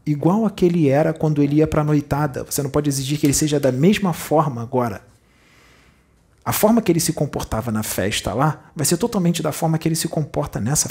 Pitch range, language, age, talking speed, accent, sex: 115-160 Hz, Portuguese, 40-59, 220 wpm, Brazilian, male